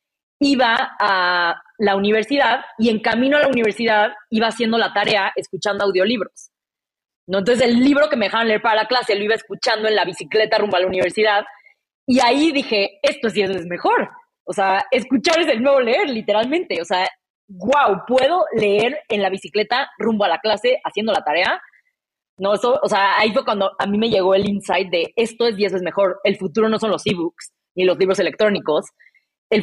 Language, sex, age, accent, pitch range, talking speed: Spanish, female, 20-39, Mexican, 200-250 Hz, 200 wpm